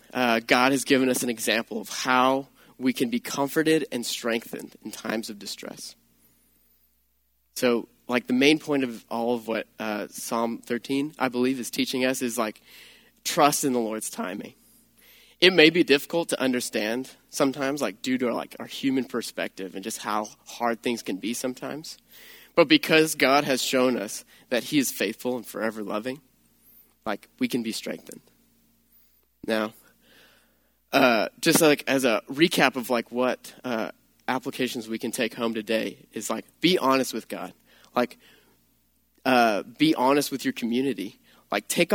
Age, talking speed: 20-39, 165 wpm